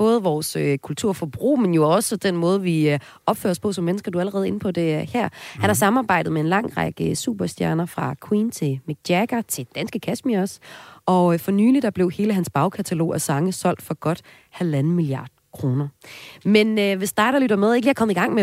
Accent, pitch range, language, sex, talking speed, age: native, 155-205 Hz, Danish, female, 230 wpm, 30-49